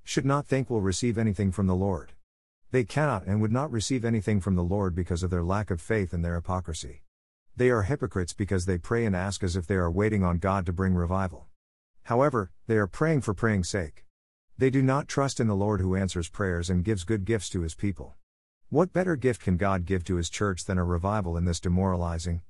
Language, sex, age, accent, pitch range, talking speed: English, male, 50-69, American, 85-115 Hz, 225 wpm